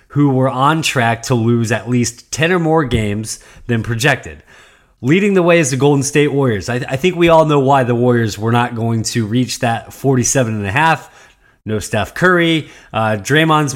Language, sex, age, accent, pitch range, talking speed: English, male, 20-39, American, 115-160 Hz, 200 wpm